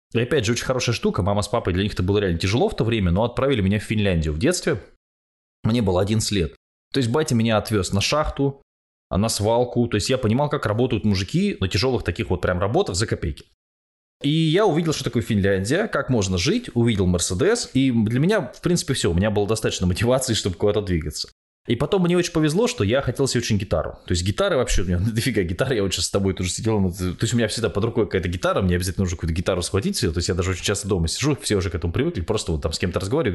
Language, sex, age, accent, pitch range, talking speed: Russian, male, 20-39, native, 90-125 Hz, 250 wpm